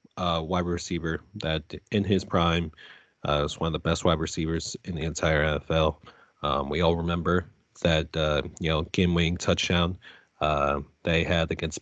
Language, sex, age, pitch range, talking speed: English, male, 30-49, 80-90 Hz, 175 wpm